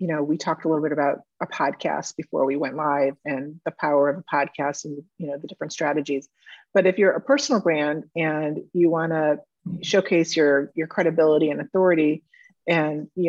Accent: American